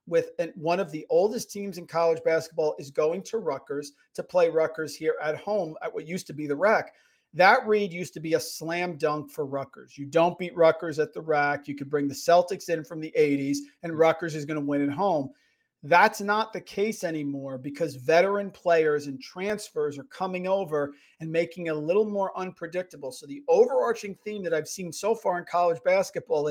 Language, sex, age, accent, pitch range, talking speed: English, male, 40-59, American, 150-195 Hz, 210 wpm